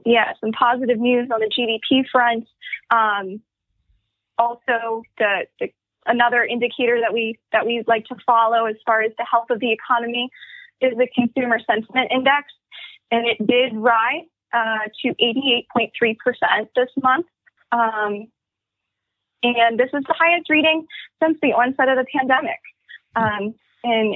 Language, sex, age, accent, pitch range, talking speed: English, female, 20-39, American, 225-255 Hz, 145 wpm